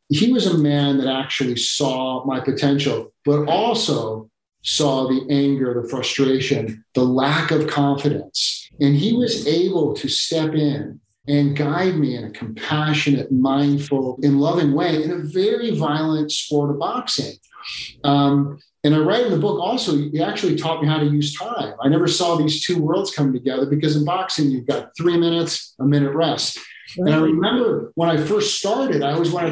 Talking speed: 180 wpm